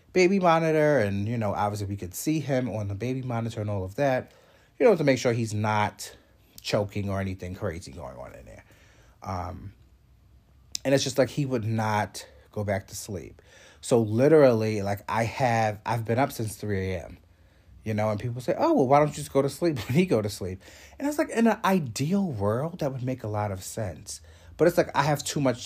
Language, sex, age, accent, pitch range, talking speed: English, male, 30-49, American, 100-130 Hz, 225 wpm